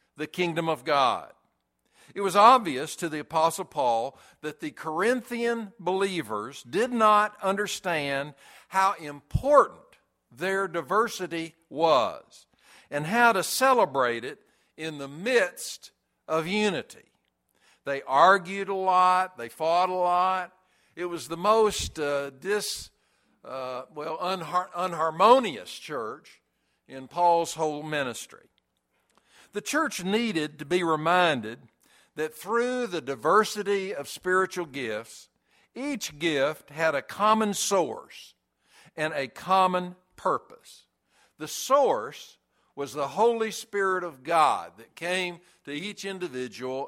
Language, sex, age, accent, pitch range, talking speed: English, male, 60-79, American, 145-200 Hz, 120 wpm